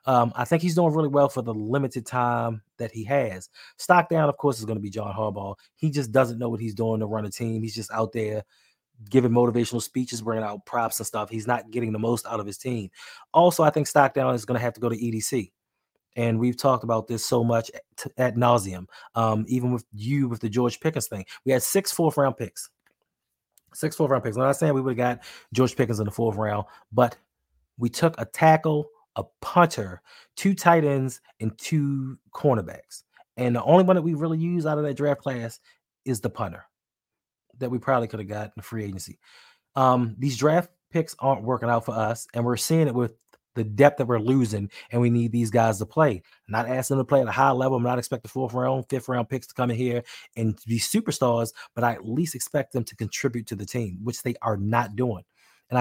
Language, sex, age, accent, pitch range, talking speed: English, male, 20-39, American, 115-135 Hz, 230 wpm